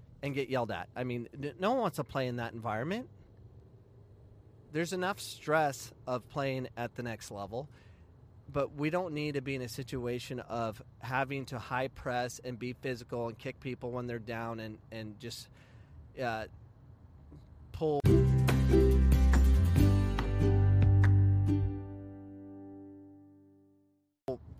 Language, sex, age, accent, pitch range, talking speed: English, male, 30-49, American, 105-150 Hz, 125 wpm